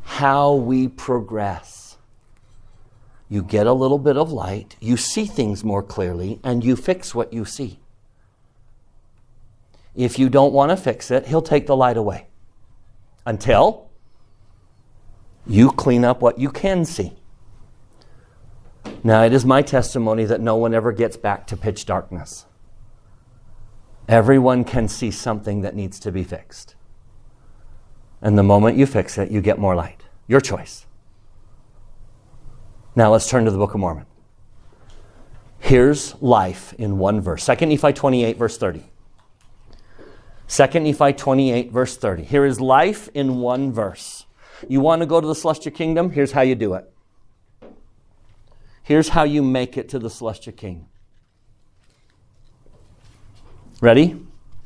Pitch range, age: 105-130 Hz, 50-69